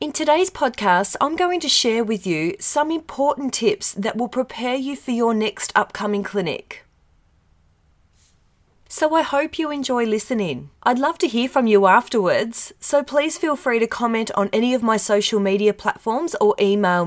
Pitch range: 195-255 Hz